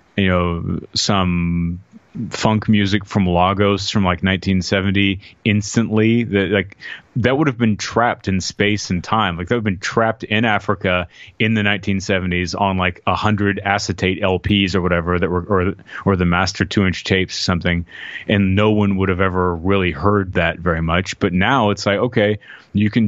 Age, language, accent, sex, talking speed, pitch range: 30-49, English, American, male, 180 wpm, 90-105 Hz